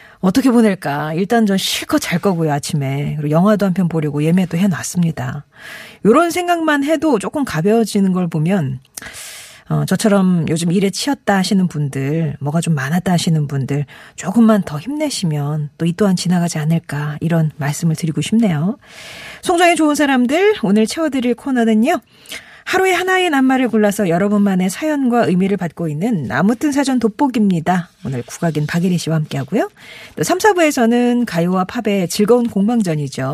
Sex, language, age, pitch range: female, Korean, 40-59, 160-230 Hz